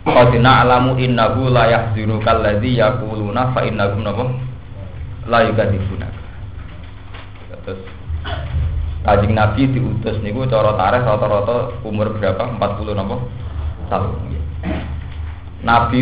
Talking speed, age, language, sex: 95 wpm, 20-39, Indonesian, male